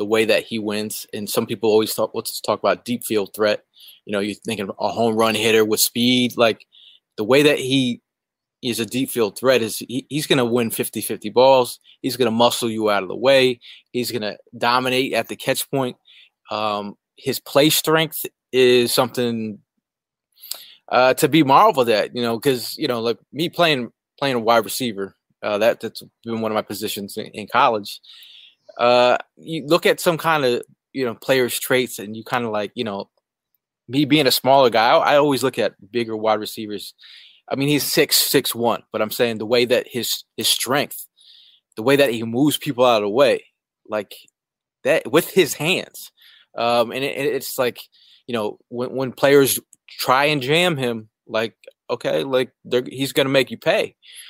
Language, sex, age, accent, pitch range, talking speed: English, male, 20-39, American, 110-135 Hz, 200 wpm